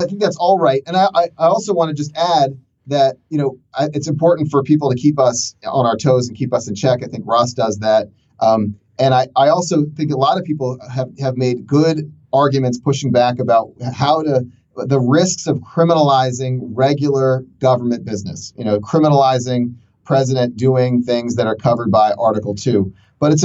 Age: 30-49